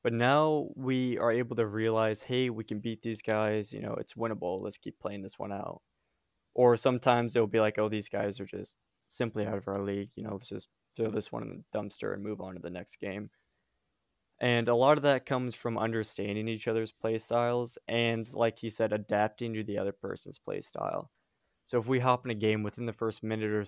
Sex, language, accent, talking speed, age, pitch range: male, English, American, 230 wpm, 20-39, 105-120 Hz